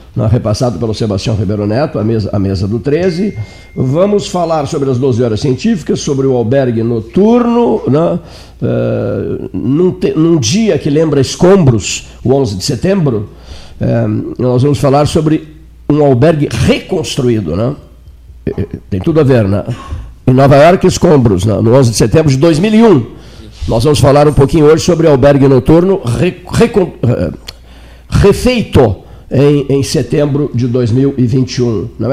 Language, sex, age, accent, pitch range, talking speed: Portuguese, male, 60-79, Brazilian, 115-155 Hz, 150 wpm